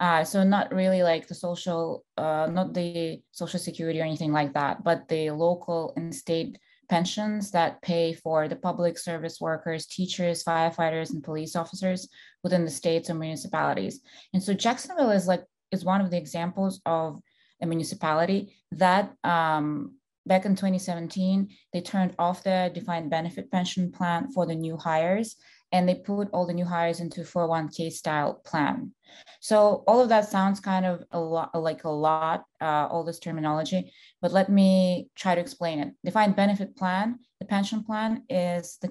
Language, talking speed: English, 170 wpm